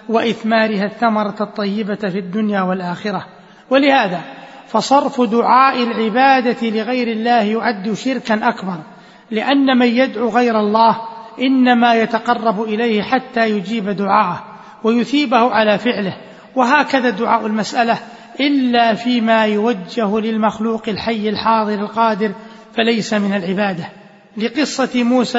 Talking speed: 105 wpm